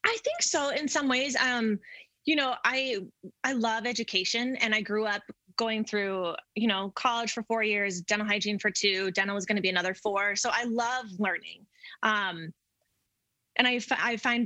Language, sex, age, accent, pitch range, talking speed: English, female, 20-39, American, 200-240 Hz, 190 wpm